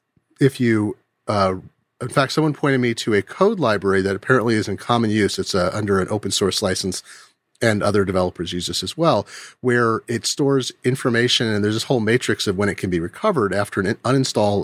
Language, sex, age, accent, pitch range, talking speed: English, male, 30-49, American, 100-125 Hz, 205 wpm